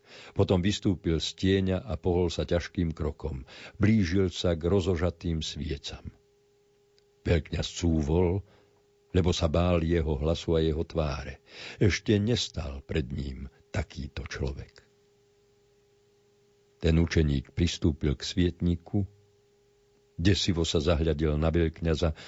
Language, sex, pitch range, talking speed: Slovak, male, 80-135 Hz, 105 wpm